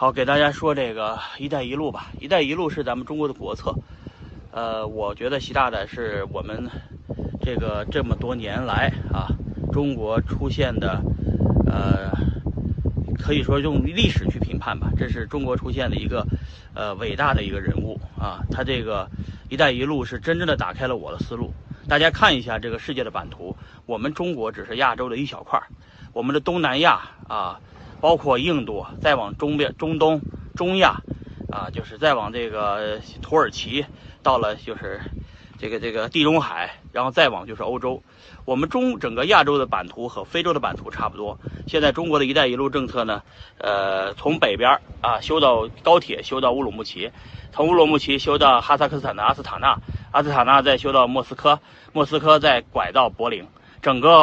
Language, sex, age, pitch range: Chinese, male, 30-49, 110-150 Hz